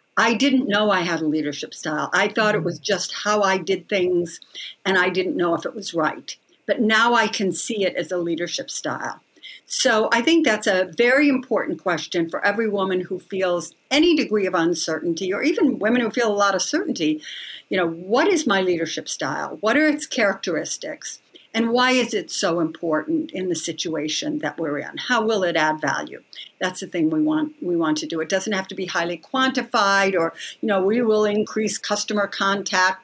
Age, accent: 60-79, American